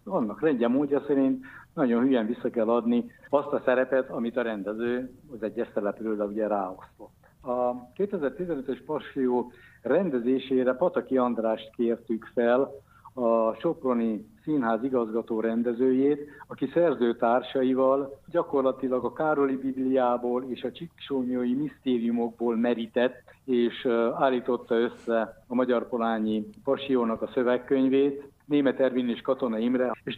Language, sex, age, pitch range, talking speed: Hungarian, male, 60-79, 115-135 Hz, 115 wpm